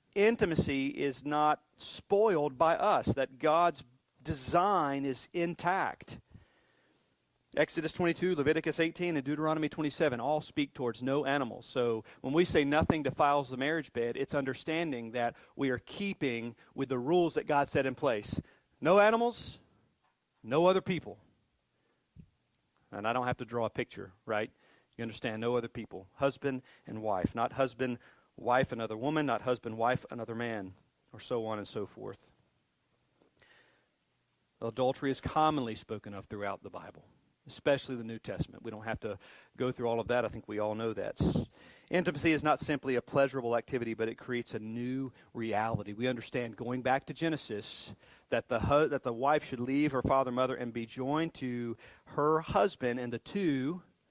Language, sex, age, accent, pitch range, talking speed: English, male, 40-59, American, 120-150 Hz, 165 wpm